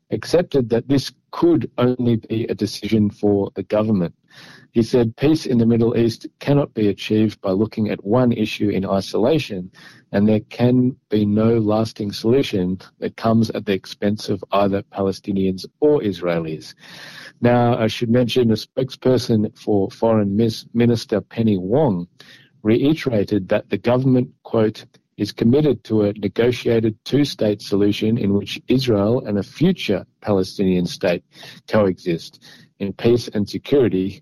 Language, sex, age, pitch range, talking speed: Hebrew, male, 50-69, 100-115 Hz, 140 wpm